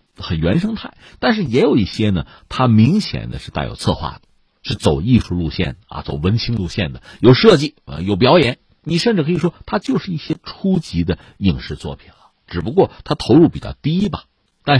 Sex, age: male, 50-69